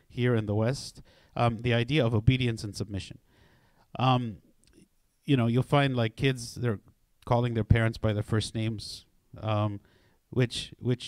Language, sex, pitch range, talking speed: English, male, 110-145 Hz, 155 wpm